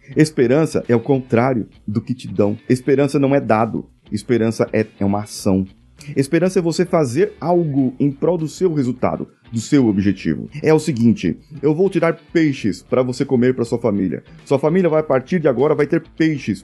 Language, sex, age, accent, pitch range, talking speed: Portuguese, male, 30-49, Brazilian, 110-155 Hz, 190 wpm